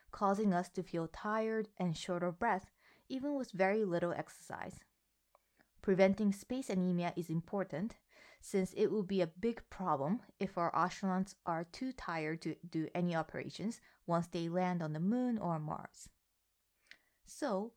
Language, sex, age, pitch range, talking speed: English, female, 20-39, 170-215 Hz, 150 wpm